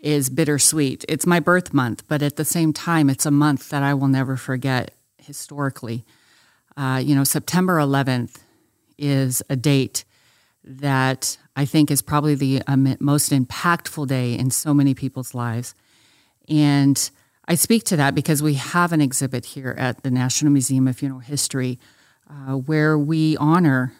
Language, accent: English, American